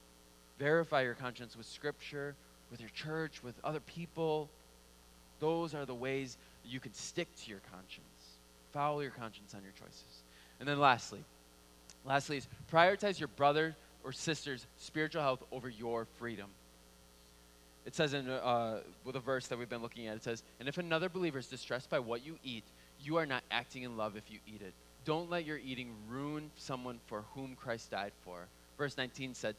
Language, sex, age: English, male, 20-39